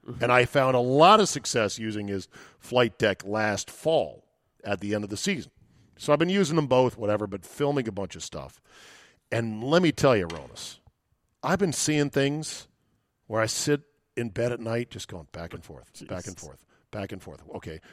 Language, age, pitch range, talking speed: English, 40-59, 110-150 Hz, 205 wpm